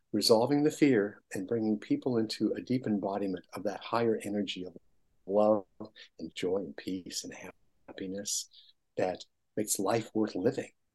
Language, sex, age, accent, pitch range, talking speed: English, male, 60-79, American, 110-140 Hz, 150 wpm